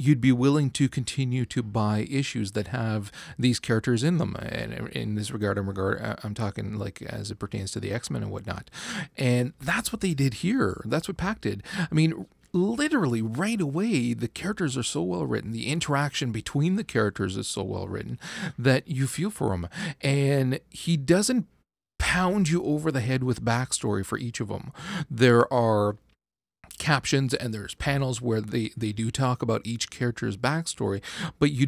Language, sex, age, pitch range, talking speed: English, male, 40-59, 110-145 Hz, 175 wpm